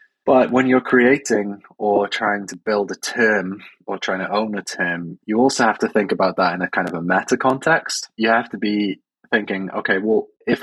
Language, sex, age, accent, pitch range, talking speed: English, male, 20-39, British, 95-115 Hz, 215 wpm